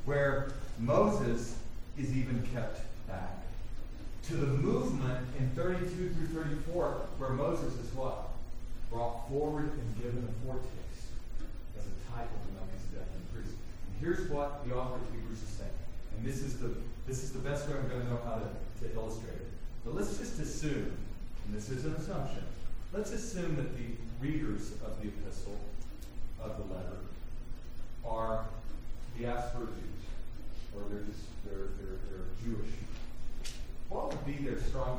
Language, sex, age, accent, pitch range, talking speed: English, male, 40-59, American, 100-135 Hz, 160 wpm